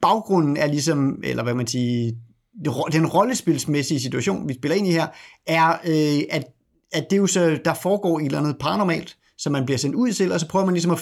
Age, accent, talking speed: 30-49, native, 225 wpm